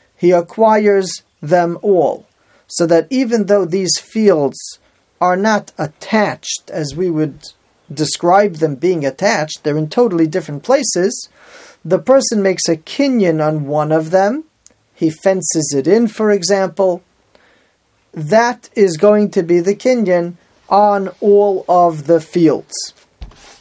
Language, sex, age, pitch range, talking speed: English, male, 40-59, 165-210 Hz, 130 wpm